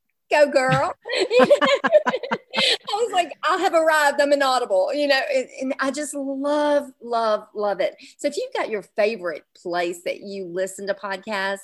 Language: English